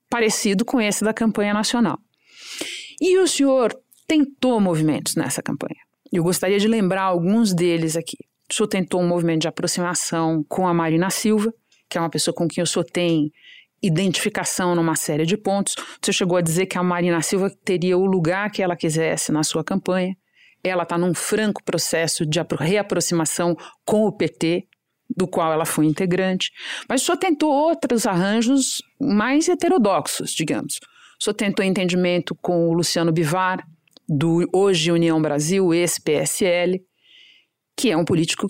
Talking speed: 165 wpm